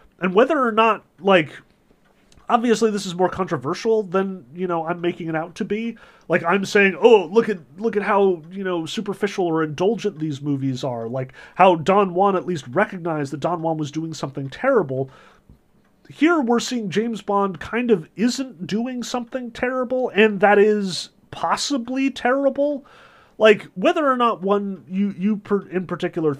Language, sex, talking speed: English, male, 170 wpm